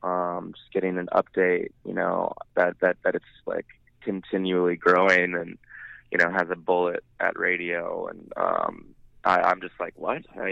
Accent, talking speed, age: American, 170 wpm, 20-39